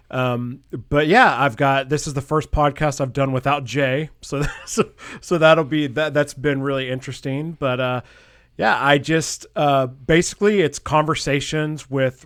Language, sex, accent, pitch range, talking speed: English, male, American, 130-150 Hz, 165 wpm